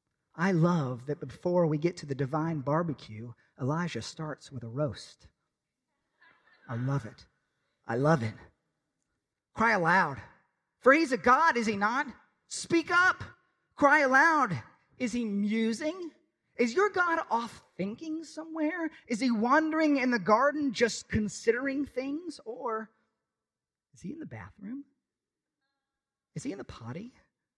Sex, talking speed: male, 135 wpm